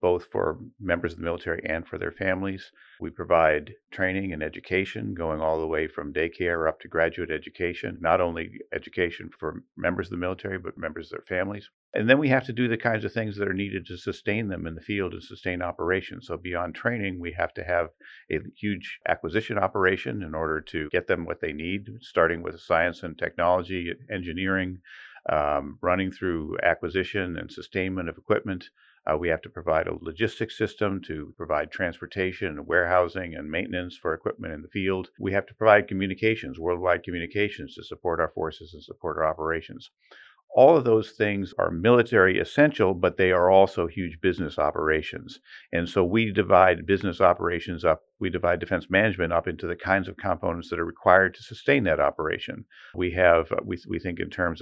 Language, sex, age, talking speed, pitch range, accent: English, male, 50-69, 190 wpm, 85-100 Hz, American